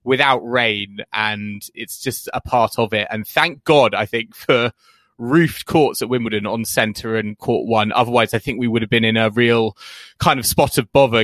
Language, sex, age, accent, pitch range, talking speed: English, male, 20-39, British, 110-130 Hz, 210 wpm